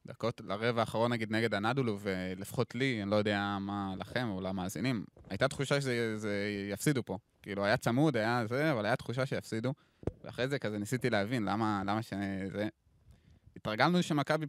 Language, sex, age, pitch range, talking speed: Hebrew, male, 20-39, 100-130 Hz, 160 wpm